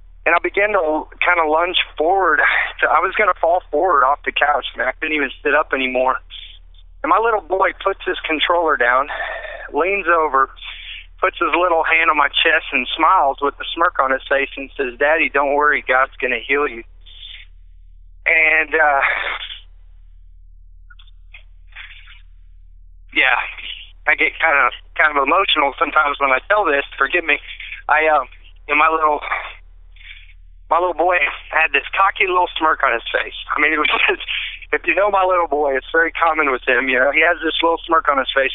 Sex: male